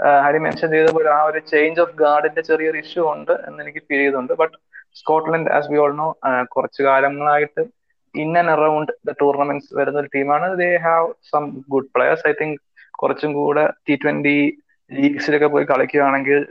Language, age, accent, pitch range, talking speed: English, 20-39, Indian, 135-175 Hz, 185 wpm